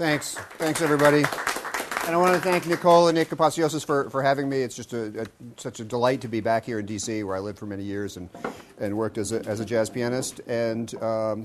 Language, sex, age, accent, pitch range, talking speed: English, male, 40-59, American, 105-165 Hz, 240 wpm